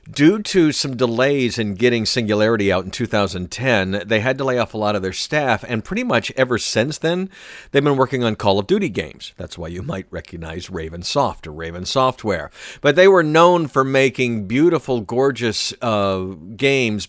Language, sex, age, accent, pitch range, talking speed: English, male, 50-69, American, 100-130 Hz, 190 wpm